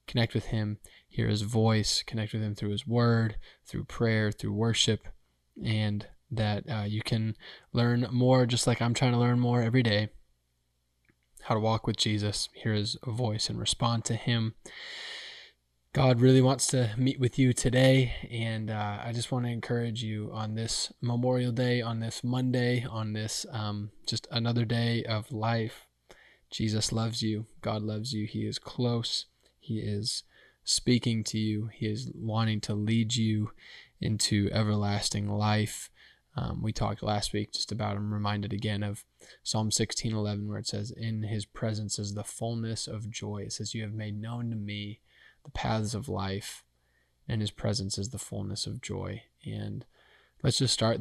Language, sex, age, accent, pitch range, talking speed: English, male, 20-39, American, 105-115 Hz, 170 wpm